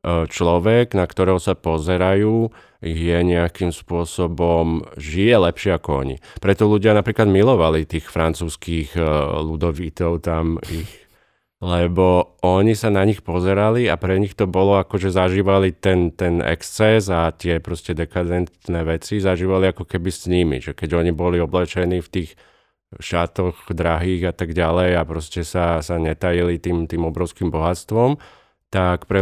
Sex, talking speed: male, 145 wpm